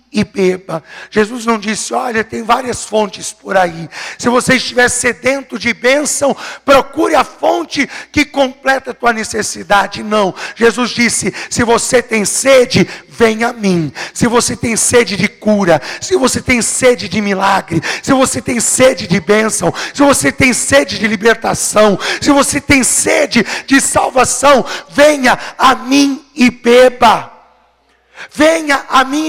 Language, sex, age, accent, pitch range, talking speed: Portuguese, male, 50-69, Brazilian, 225-275 Hz, 150 wpm